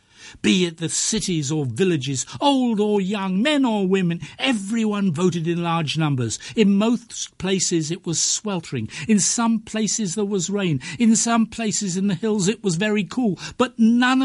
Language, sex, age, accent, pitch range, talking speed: English, male, 50-69, British, 150-225 Hz, 175 wpm